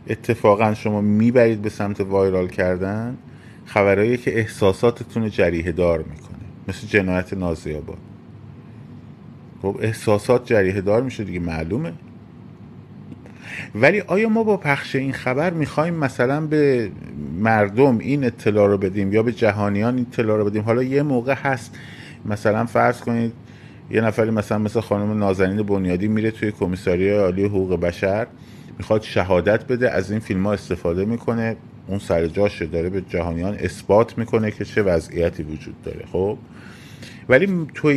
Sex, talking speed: male, 140 wpm